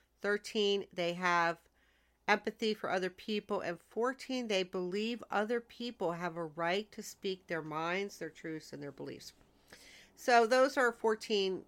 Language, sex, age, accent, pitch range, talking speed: English, female, 50-69, American, 175-240 Hz, 150 wpm